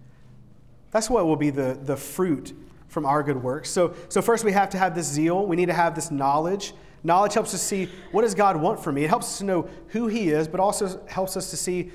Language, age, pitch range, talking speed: English, 40-59, 140-185 Hz, 250 wpm